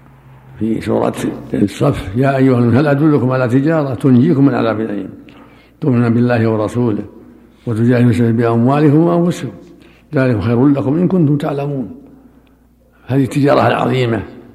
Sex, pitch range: male, 115-135 Hz